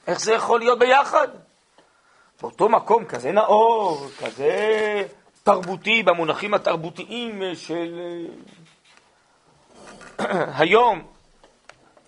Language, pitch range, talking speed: Hebrew, 155-230 Hz, 75 wpm